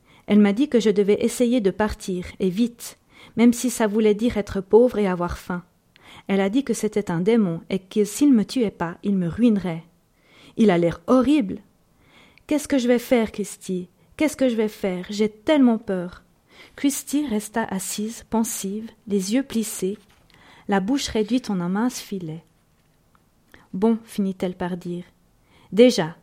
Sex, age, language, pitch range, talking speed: female, 40-59, French, 190-235 Hz, 170 wpm